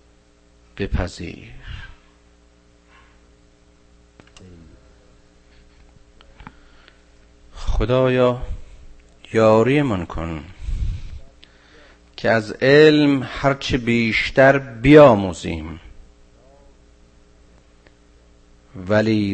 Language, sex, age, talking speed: Persian, male, 50-69, 35 wpm